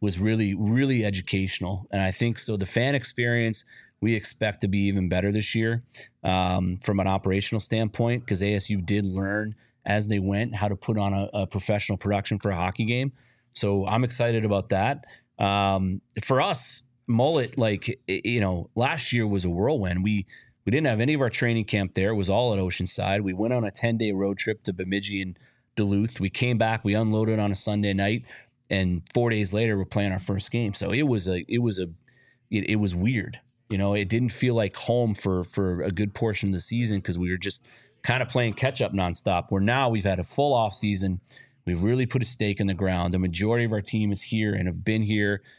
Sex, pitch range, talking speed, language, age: male, 95-115 Hz, 220 wpm, English, 30-49